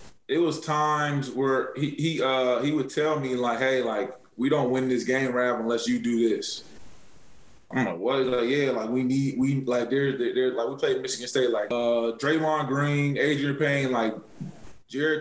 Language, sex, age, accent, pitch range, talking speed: English, male, 20-39, American, 120-150 Hz, 190 wpm